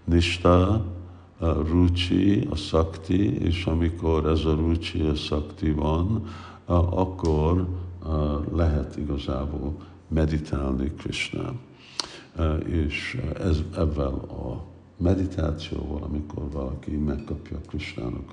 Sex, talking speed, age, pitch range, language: male, 80 wpm, 60-79, 75-90 Hz, Hungarian